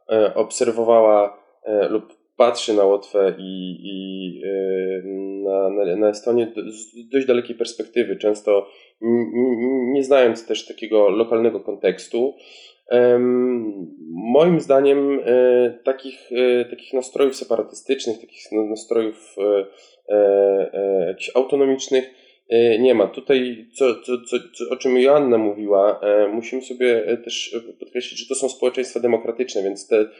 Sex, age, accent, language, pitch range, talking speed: male, 20-39, native, Polish, 115-135 Hz, 110 wpm